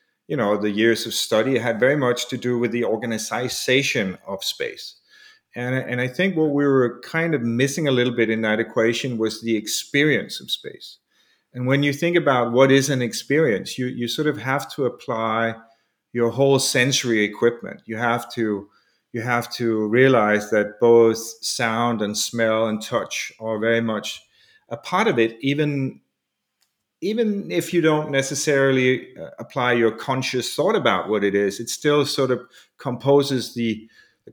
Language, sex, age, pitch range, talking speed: English, male, 40-59, 115-140 Hz, 175 wpm